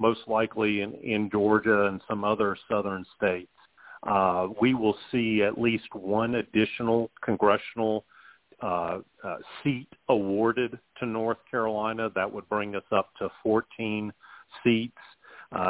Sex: male